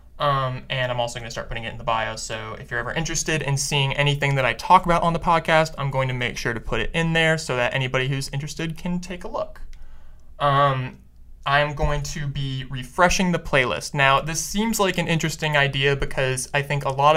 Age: 20-39